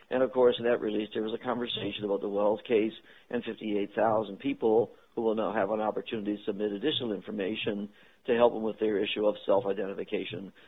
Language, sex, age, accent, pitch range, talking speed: English, male, 50-69, American, 110-125 Hz, 195 wpm